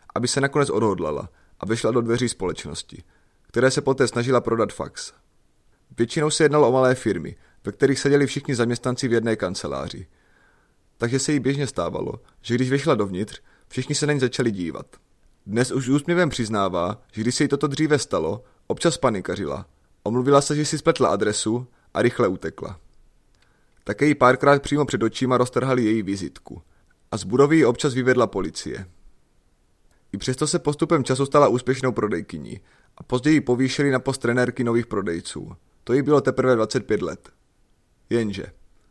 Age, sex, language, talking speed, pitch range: 30-49, male, Czech, 160 wpm, 110-140 Hz